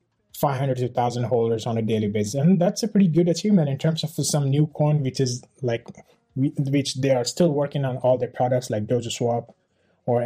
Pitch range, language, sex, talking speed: 120-150 Hz, English, male, 210 wpm